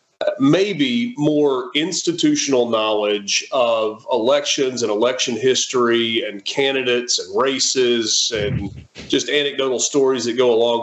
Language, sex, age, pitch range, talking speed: English, male, 30-49, 115-150 Hz, 110 wpm